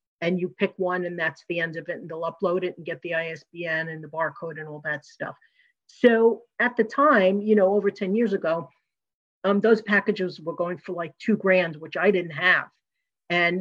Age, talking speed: 50-69, 215 wpm